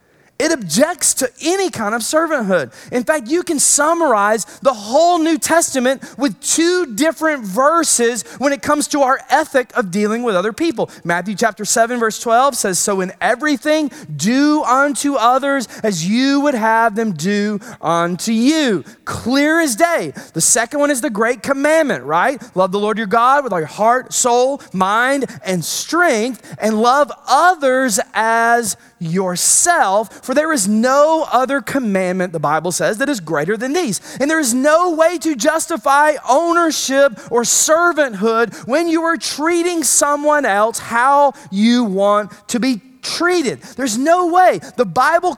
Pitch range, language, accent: 200-295 Hz, English, American